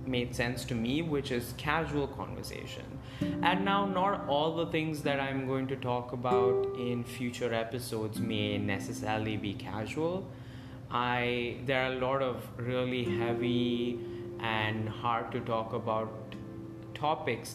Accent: Indian